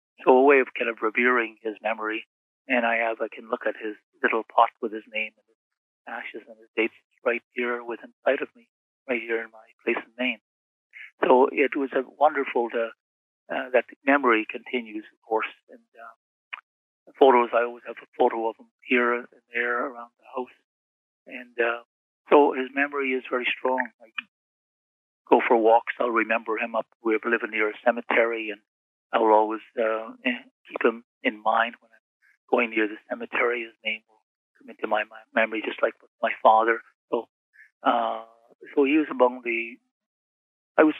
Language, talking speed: English, 185 wpm